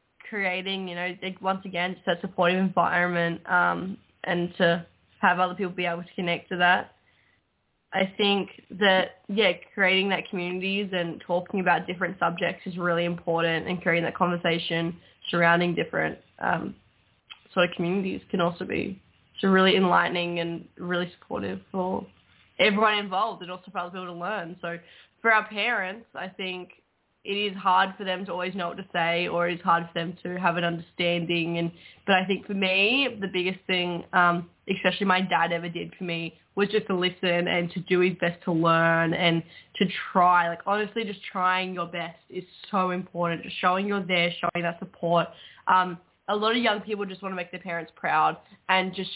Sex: female